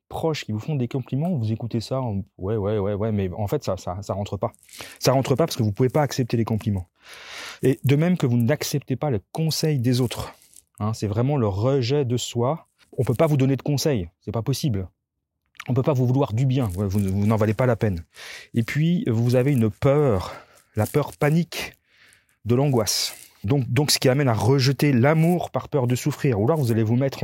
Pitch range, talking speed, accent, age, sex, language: 110-145 Hz, 230 wpm, French, 30-49, male, French